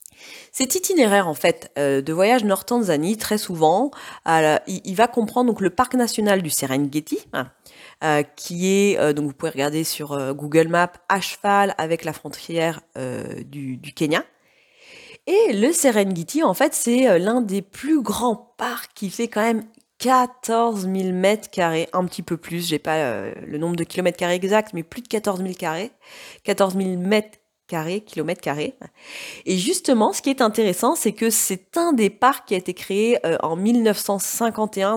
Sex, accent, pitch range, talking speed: female, French, 165-225 Hz, 180 wpm